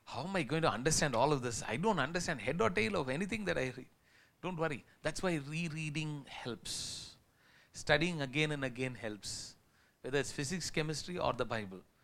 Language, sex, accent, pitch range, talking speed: English, male, Indian, 125-180 Hz, 190 wpm